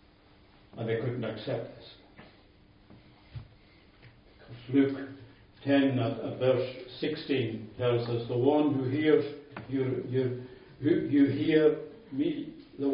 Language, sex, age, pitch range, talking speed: English, male, 60-79, 110-140 Hz, 110 wpm